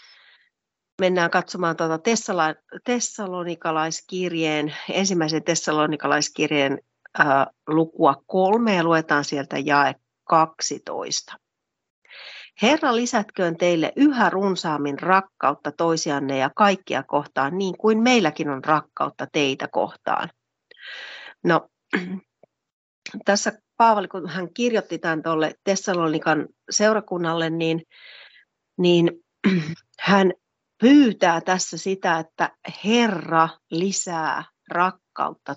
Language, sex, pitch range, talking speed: Finnish, female, 155-190 Hz, 90 wpm